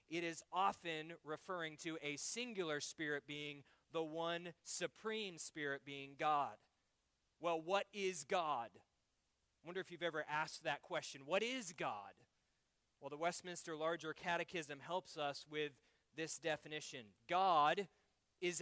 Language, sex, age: English, male, 30-49